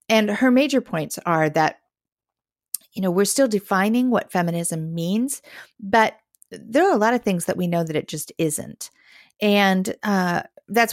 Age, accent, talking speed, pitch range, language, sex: 40-59, American, 170 wpm, 165-220 Hz, English, female